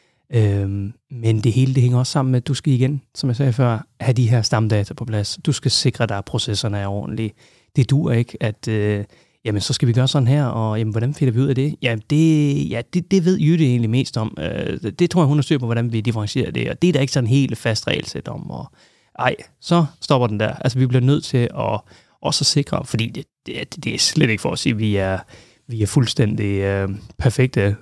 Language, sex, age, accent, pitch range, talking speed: Danish, male, 30-49, native, 110-135 Hz, 250 wpm